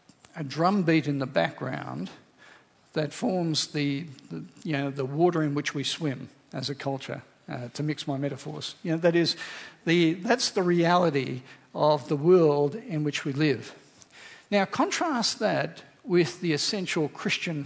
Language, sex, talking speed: English, male, 160 wpm